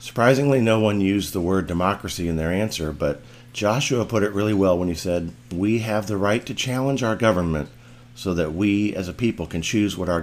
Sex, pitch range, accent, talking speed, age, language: male, 90-120 Hz, American, 215 wpm, 50-69, English